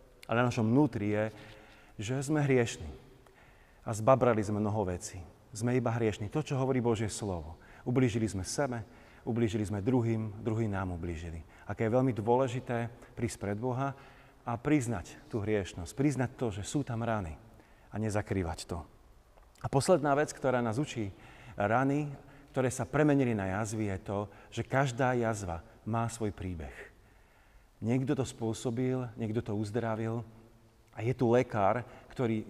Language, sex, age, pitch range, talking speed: Slovak, male, 30-49, 110-130 Hz, 150 wpm